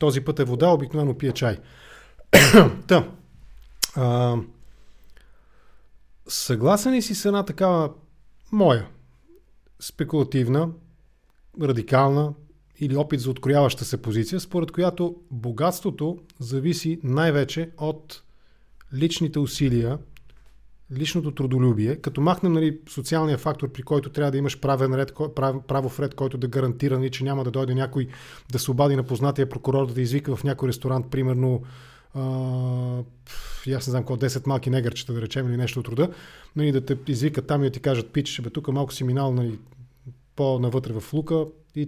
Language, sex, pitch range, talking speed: English, male, 130-155 Hz, 150 wpm